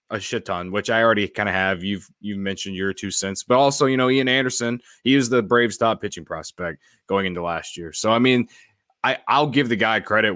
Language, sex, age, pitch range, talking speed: English, male, 20-39, 95-115 Hz, 235 wpm